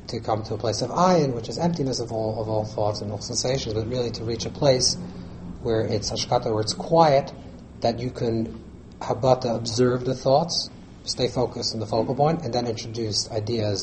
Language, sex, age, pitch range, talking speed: English, male, 40-59, 105-125 Hz, 205 wpm